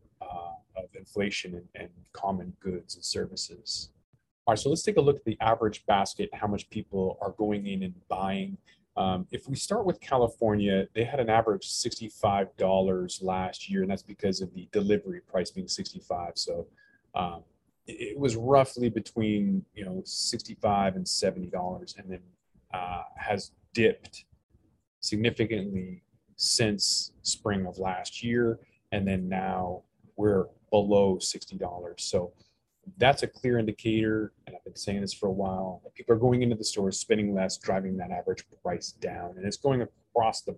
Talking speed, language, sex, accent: 165 wpm, English, male, American